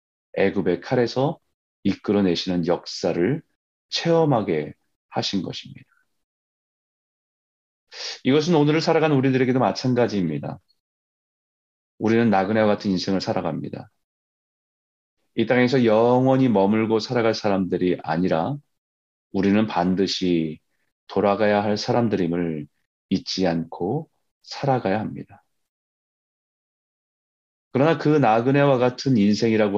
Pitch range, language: 90-130 Hz, Korean